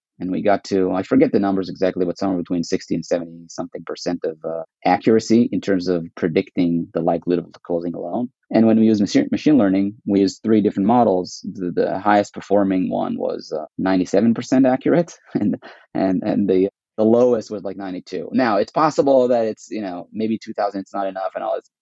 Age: 30-49